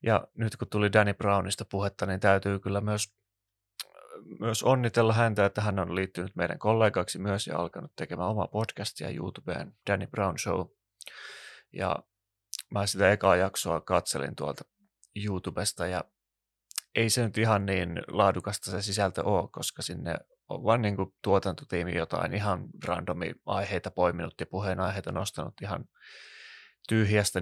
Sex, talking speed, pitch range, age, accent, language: male, 140 wpm, 95-105 Hz, 30-49, native, Finnish